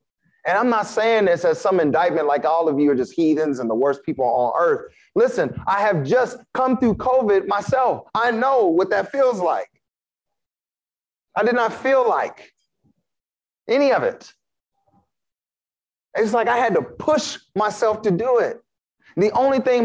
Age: 30-49